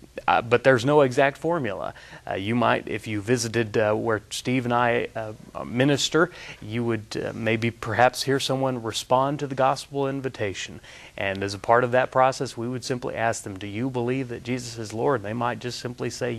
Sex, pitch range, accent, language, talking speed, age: male, 110-135 Hz, American, English, 200 wpm, 30-49